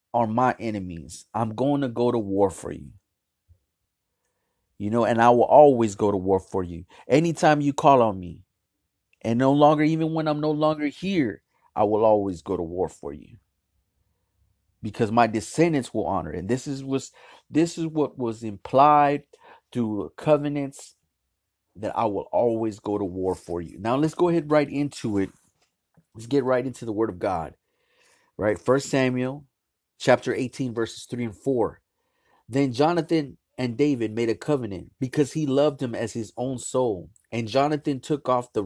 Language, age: English, 30-49